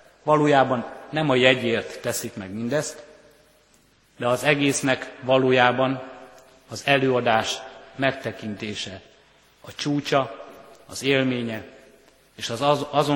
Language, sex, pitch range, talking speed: Hungarian, male, 115-140 Hz, 90 wpm